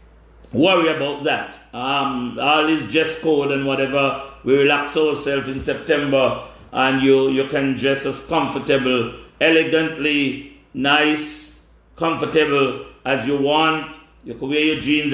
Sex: male